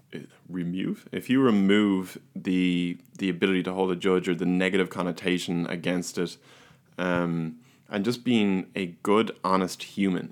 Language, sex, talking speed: English, male, 145 wpm